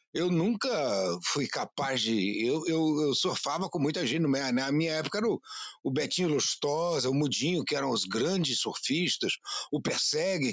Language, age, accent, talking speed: Portuguese, 60-79, Brazilian, 175 wpm